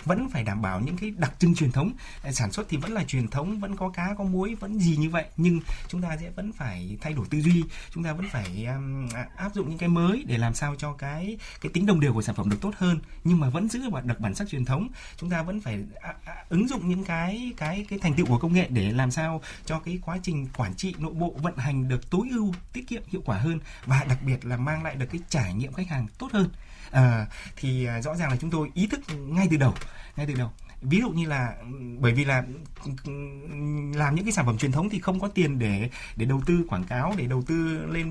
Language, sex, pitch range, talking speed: Vietnamese, male, 130-180 Hz, 260 wpm